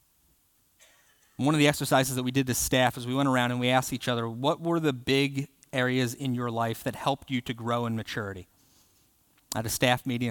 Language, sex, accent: English, male, American